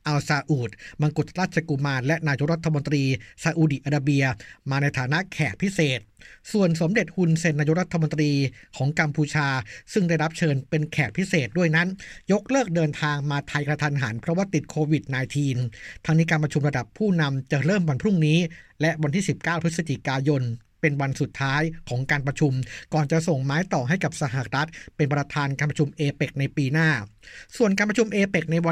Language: Thai